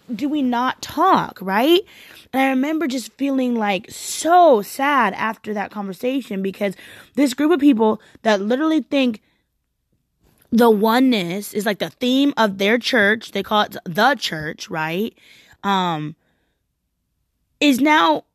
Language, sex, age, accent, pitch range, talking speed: English, female, 20-39, American, 200-270 Hz, 135 wpm